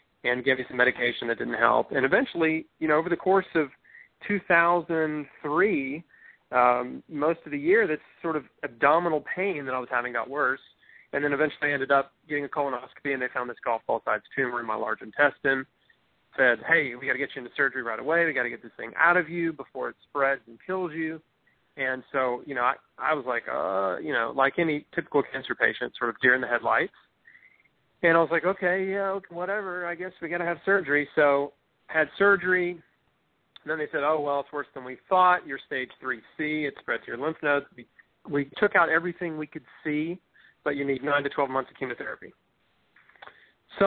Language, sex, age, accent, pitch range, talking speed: English, male, 30-49, American, 140-185 Hz, 210 wpm